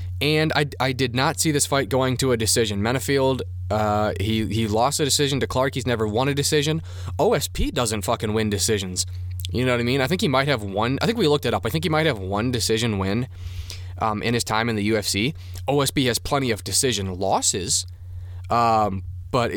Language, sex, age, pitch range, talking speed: English, male, 20-39, 90-125 Hz, 220 wpm